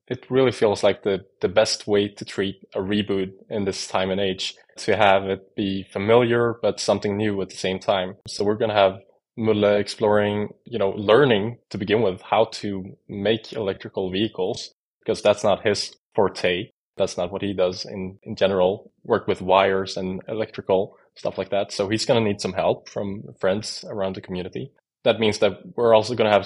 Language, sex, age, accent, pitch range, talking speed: English, male, 20-39, Norwegian, 100-115 Hz, 200 wpm